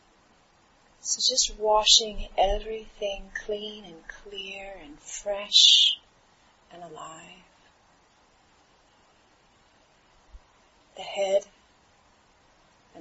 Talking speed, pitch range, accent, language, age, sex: 65 wpm, 165-210 Hz, American, English, 30-49, female